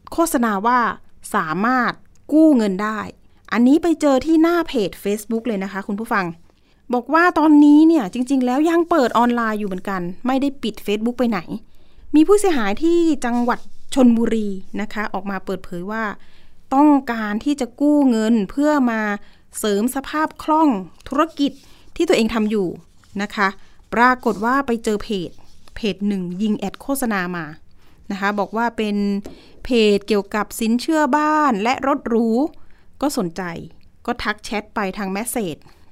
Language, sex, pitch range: Thai, female, 205-275 Hz